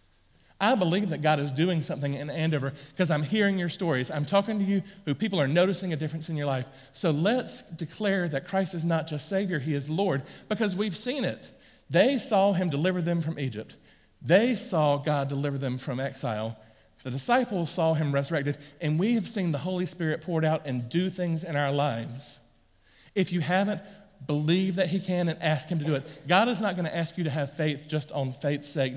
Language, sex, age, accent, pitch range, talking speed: English, male, 40-59, American, 140-185 Hz, 215 wpm